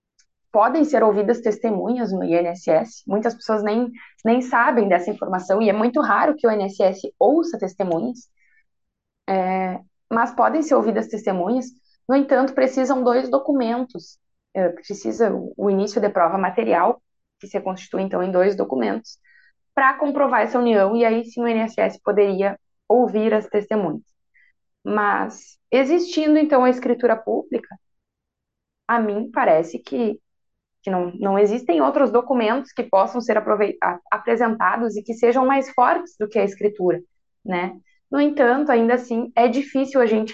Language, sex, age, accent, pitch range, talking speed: Portuguese, female, 20-39, Brazilian, 210-260 Hz, 145 wpm